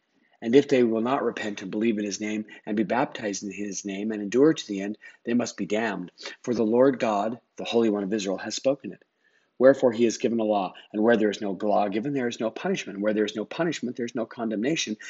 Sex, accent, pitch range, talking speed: male, American, 105-130 Hz, 255 wpm